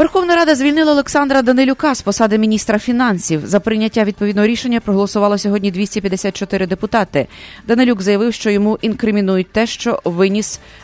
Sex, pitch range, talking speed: female, 180-230 Hz, 140 wpm